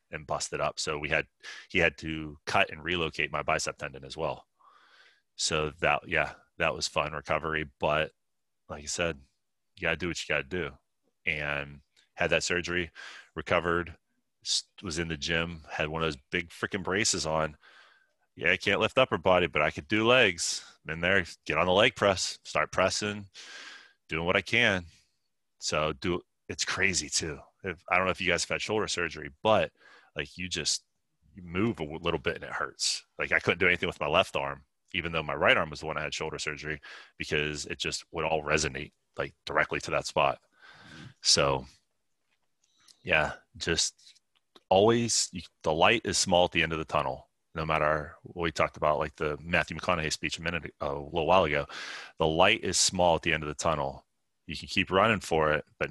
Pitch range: 75-90 Hz